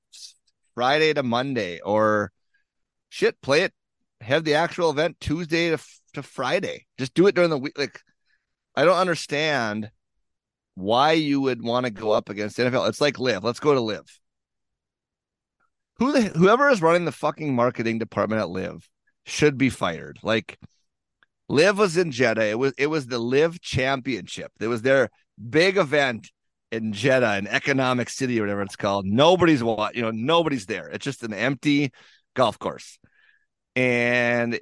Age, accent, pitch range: 30-49, American, 115-155 Hz